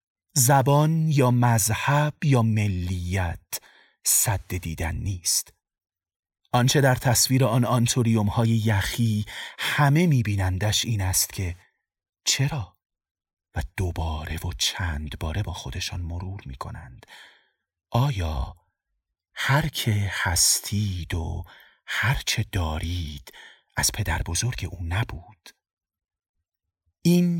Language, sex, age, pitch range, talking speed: Persian, male, 40-59, 85-125 Hz, 95 wpm